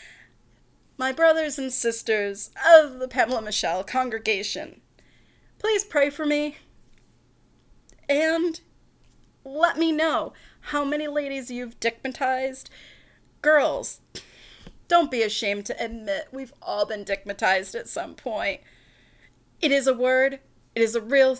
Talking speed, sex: 120 wpm, female